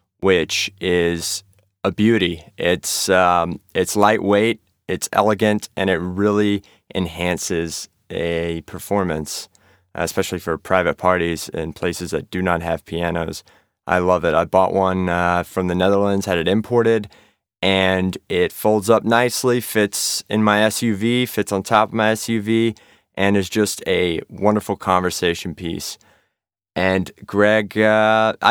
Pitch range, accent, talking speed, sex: 95-120 Hz, American, 135 wpm, male